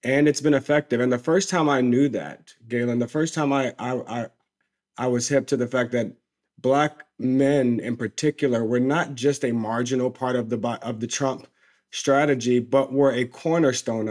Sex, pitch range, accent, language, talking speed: male, 120-140 Hz, American, English, 190 wpm